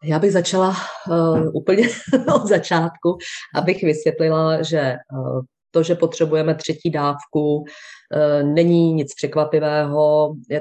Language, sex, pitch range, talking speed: Czech, female, 135-155 Hz, 120 wpm